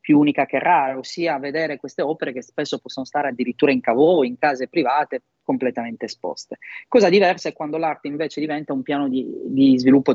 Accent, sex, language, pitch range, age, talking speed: native, male, Italian, 135-190 Hz, 30-49, 190 wpm